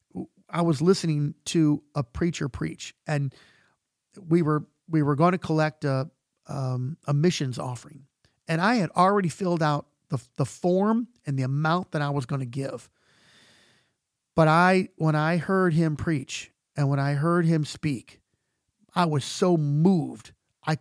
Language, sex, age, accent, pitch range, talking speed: English, male, 50-69, American, 140-180 Hz, 160 wpm